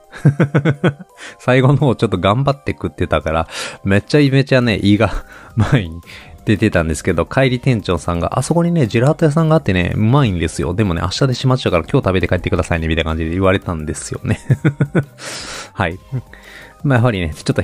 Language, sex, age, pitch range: Japanese, male, 20-39, 90-130 Hz